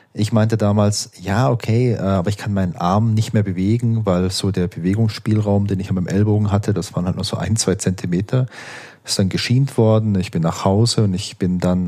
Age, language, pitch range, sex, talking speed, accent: 40-59, German, 95-115 Hz, male, 210 wpm, German